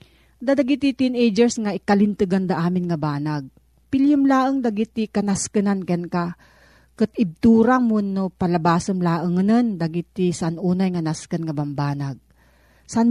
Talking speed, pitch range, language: 135 wpm, 170-220 Hz, Filipino